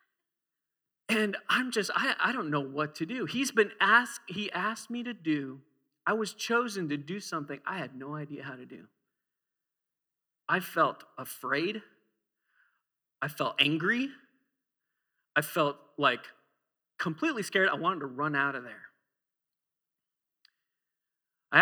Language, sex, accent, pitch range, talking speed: English, male, American, 135-190 Hz, 140 wpm